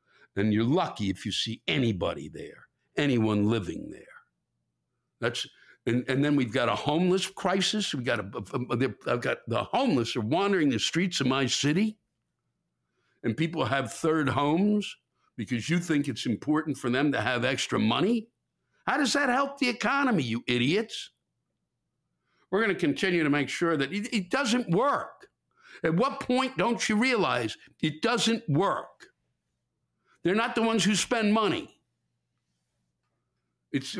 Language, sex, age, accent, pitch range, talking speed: English, male, 60-79, American, 120-195 Hz, 155 wpm